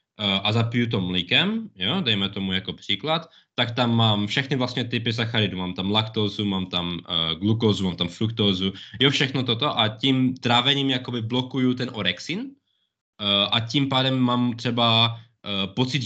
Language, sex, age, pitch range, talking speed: Czech, male, 20-39, 100-125 Hz, 155 wpm